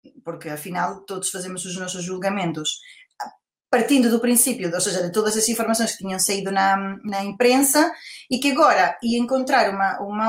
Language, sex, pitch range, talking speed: Portuguese, female, 200-250 Hz, 170 wpm